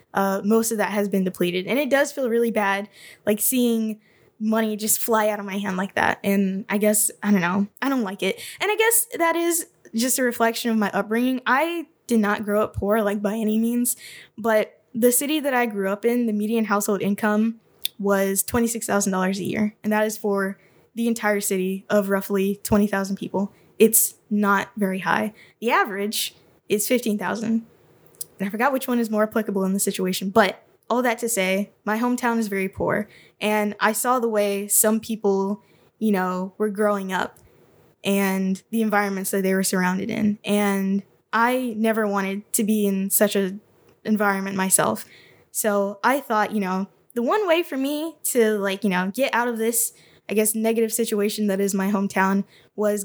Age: 10-29